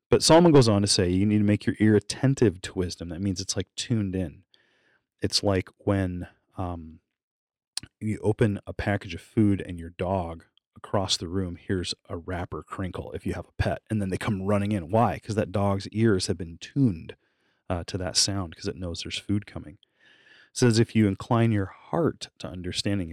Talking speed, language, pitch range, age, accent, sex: 205 wpm, English, 95-115 Hz, 30-49, American, male